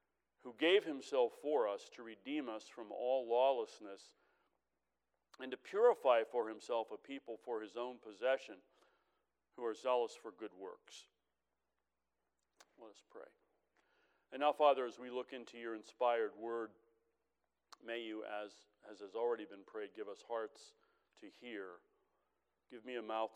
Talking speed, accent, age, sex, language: 150 wpm, American, 40-59, male, English